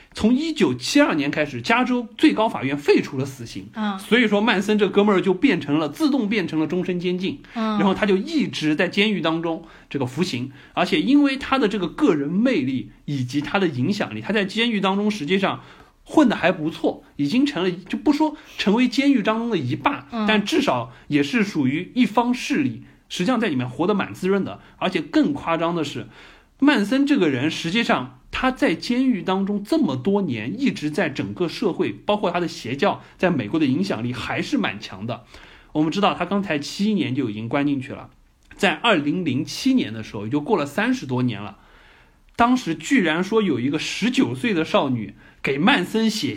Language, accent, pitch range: Chinese, native, 150-245 Hz